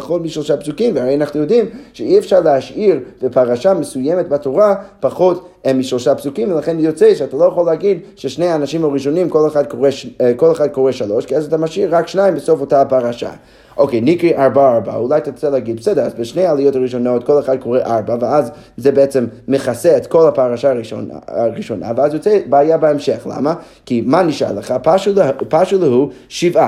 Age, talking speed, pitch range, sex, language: 30-49, 180 wpm, 130-175 Hz, male, Hebrew